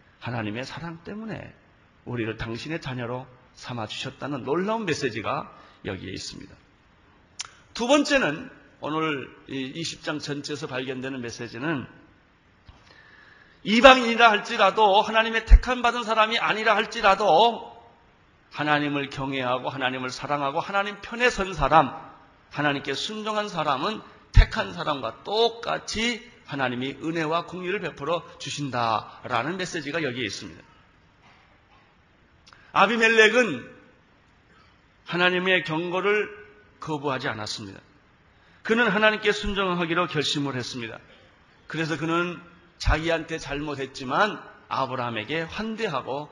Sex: male